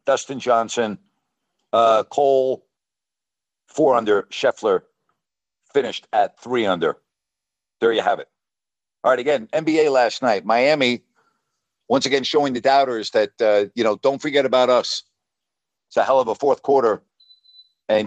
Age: 60-79